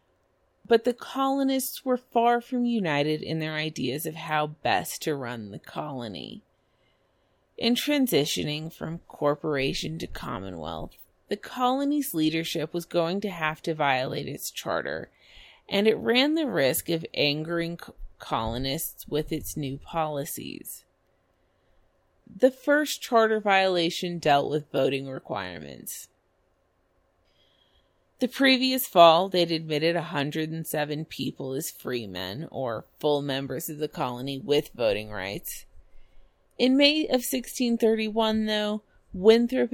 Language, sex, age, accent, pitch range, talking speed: English, female, 30-49, American, 145-220 Hz, 120 wpm